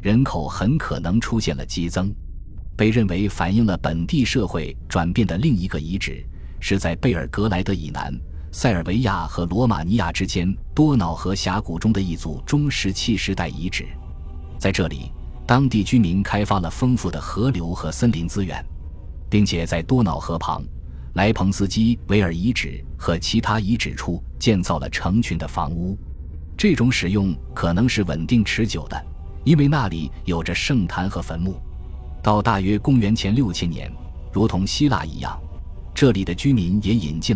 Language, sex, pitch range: Chinese, male, 80-110 Hz